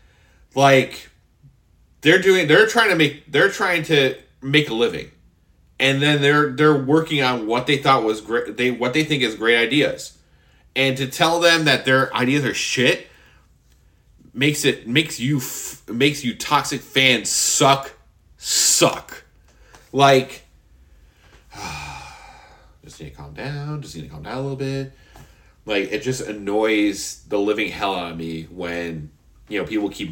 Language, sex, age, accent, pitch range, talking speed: English, male, 30-49, American, 85-135 Hz, 155 wpm